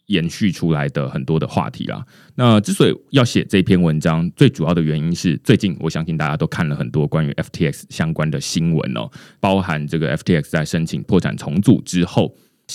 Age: 20-39